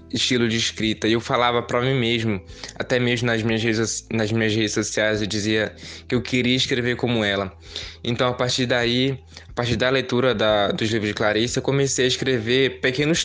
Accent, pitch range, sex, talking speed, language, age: Brazilian, 105-125 Hz, male, 200 wpm, Portuguese, 20-39